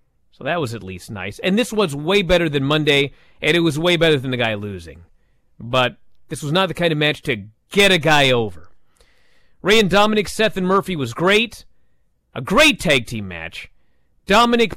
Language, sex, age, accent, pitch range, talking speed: English, male, 40-59, American, 125-195 Hz, 200 wpm